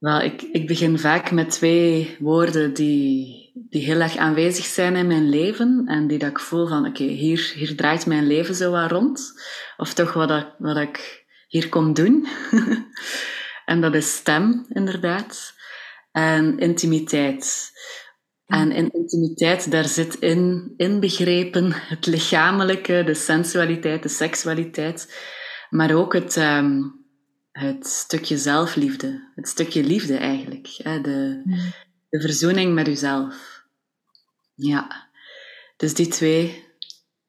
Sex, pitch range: female, 150-180 Hz